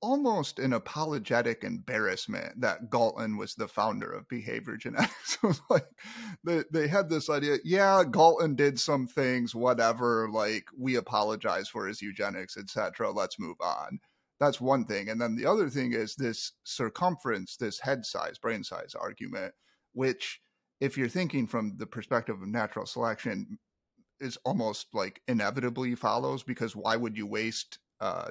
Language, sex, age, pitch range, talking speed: English, male, 30-49, 120-175 Hz, 155 wpm